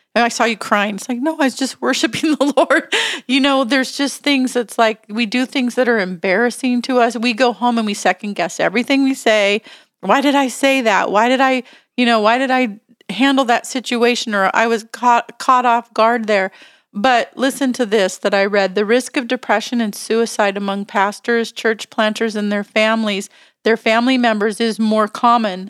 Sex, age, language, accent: female, 40-59, English, American